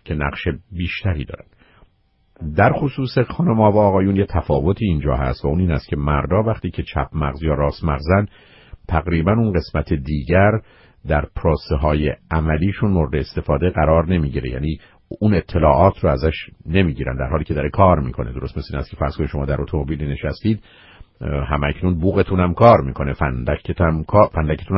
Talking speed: 165 wpm